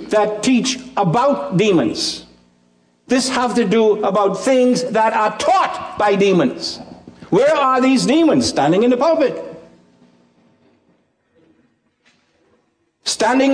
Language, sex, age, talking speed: English, male, 60-79, 105 wpm